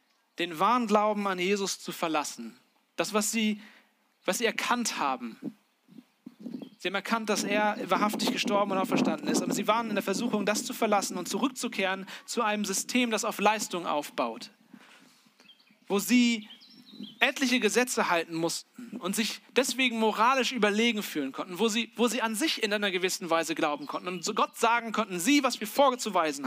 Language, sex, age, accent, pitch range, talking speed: German, male, 40-59, German, 185-240 Hz, 170 wpm